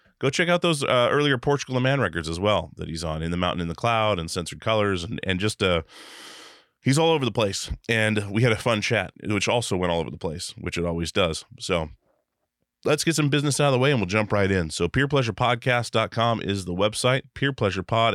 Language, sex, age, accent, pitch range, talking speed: English, male, 30-49, American, 90-115 Hz, 230 wpm